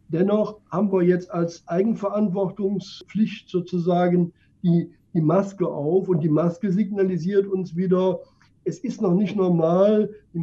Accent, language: German, German